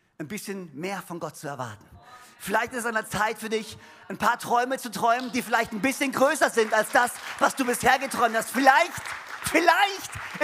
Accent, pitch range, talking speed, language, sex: German, 220-285 Hz, 200 wpm, German, male